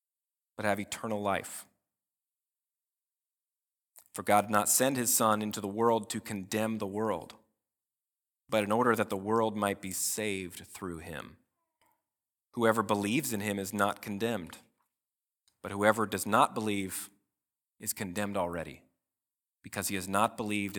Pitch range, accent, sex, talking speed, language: 100-125 Hz, American, male, 140 wpm, English